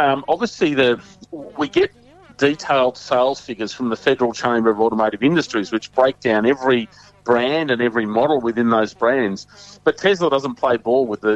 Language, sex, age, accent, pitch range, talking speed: English, male, 40-59, Australian, 110-135 Hz, 175 wpm